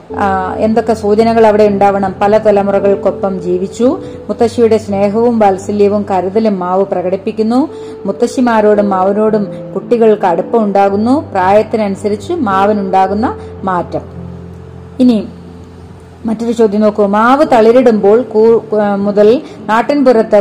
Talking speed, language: 80 wpm, Malayalam